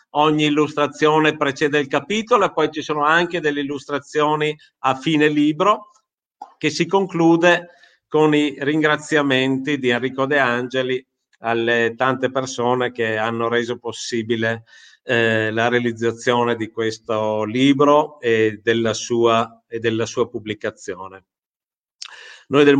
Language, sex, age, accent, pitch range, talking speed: Italian, male, 50-69, native, 120-150 Hz, 120 wpm